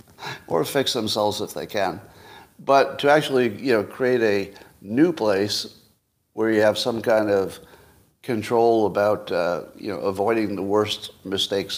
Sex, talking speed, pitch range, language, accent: male, 155 wpm, 105-140 Hz, English, American